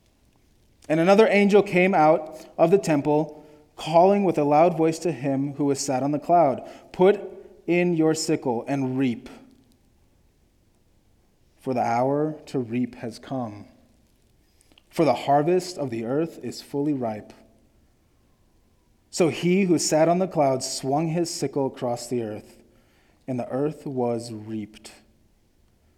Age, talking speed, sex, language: 30-49, 140 wpm, male, English